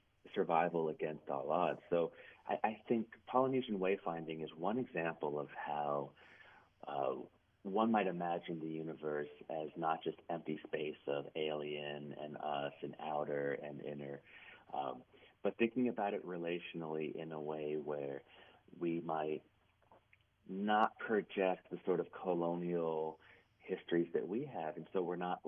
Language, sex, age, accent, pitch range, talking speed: English, male, 30-49, American, 80-95 Hz, 140 wpm